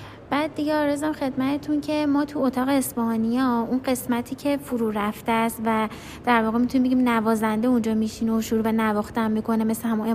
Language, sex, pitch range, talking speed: Persian, female, 225-275 Hz, 170 wpm